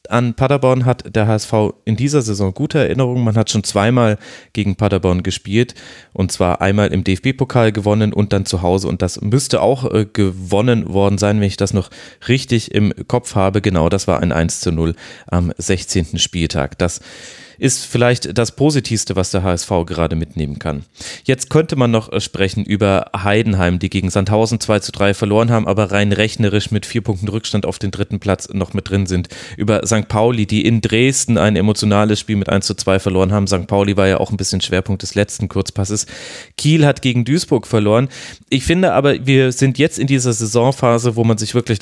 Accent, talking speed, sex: German, 195 wpm, male